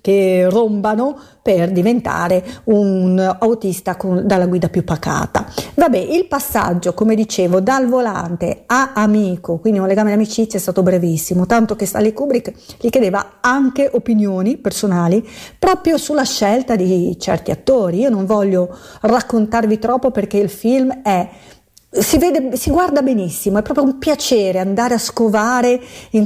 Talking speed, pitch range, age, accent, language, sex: 145 wpm, 195-245 Hz, 50-69, native, Italian, female